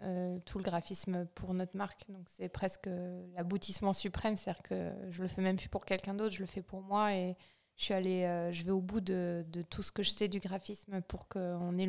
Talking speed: 240 wpm